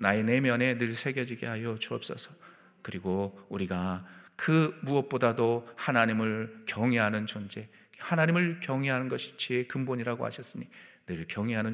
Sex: male